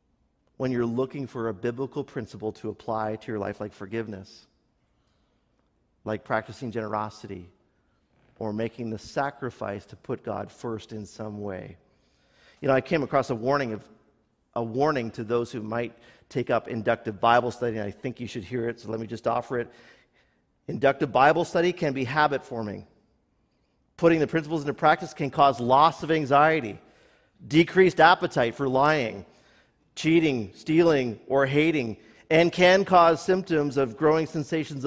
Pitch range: 110-145 Hz